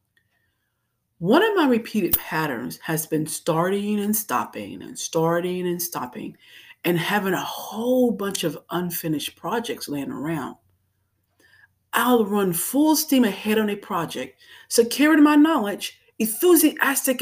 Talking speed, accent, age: 125 wpm, American, 40-59